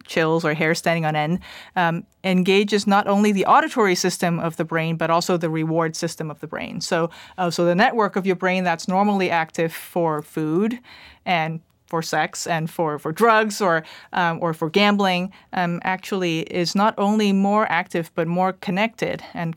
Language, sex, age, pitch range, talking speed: English, female, 30-49, 165-205 Hz, 185 wpm